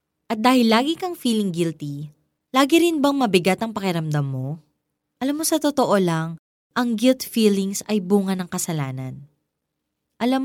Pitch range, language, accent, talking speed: 175-250 Hz, Filipino, native, 150 wpm